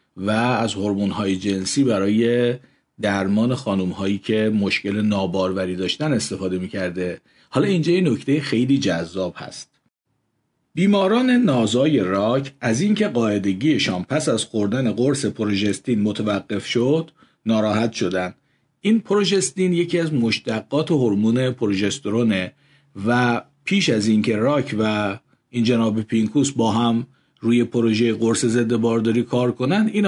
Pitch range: 105-145 Hz